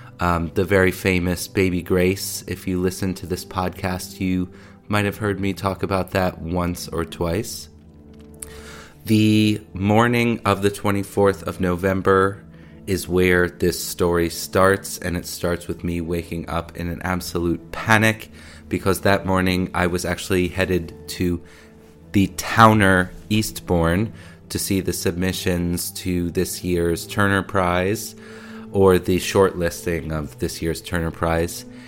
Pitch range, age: 85-100 Hz, 20-39